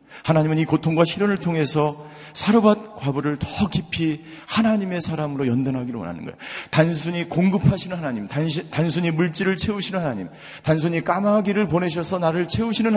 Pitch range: 120-185 Hz